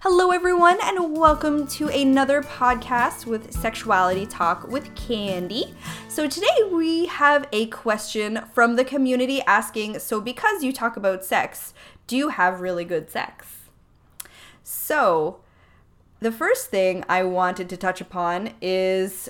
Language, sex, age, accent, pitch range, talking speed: English, female, 10-29, American, 185-245 Hz, 135 wpm